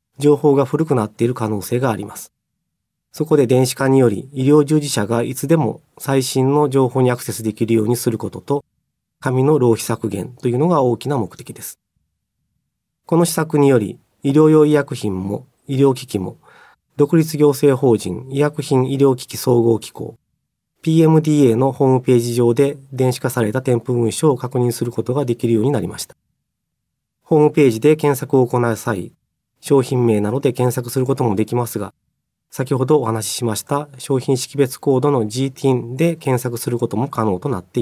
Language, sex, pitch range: Japanese, male, 115-140 Hz